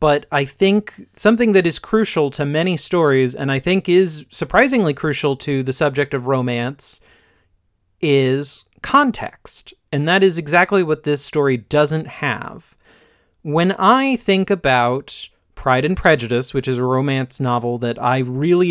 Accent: American